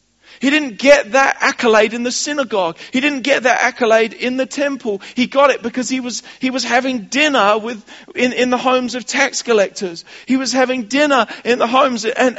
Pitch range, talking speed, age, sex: 165-255 Hz, 205 wpm, 40-59, male